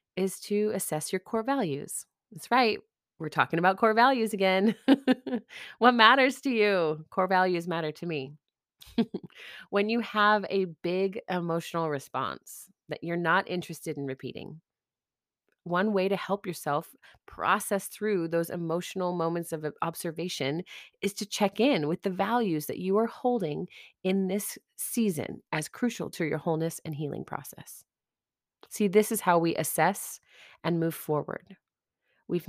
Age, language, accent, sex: 30-49, English, American, female